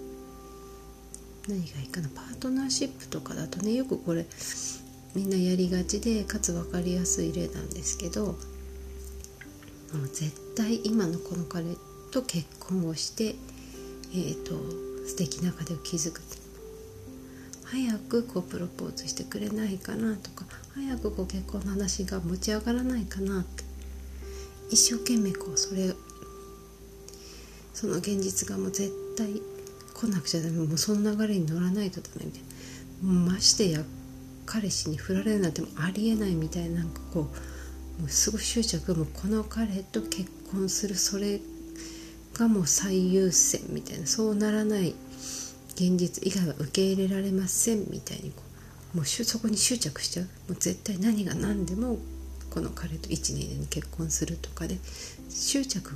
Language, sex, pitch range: Japanese, female, 130-205 Hz